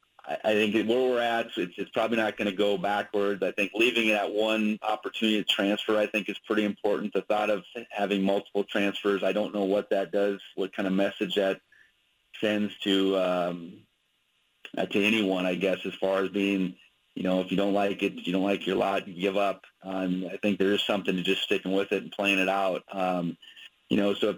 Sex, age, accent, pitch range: male, 30-49, American, 95-105 Hz